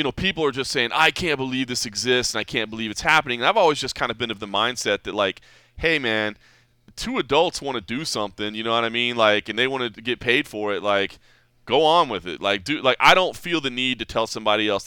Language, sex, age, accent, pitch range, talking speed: English, male, 20-39, American, 120-190 Hz, 270 wpm